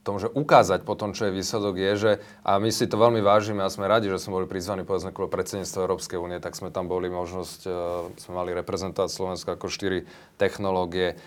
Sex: male